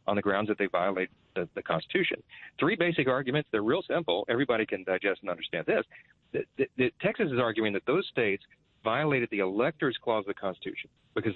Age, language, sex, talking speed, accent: 40-59, English, male, 200 wpm, American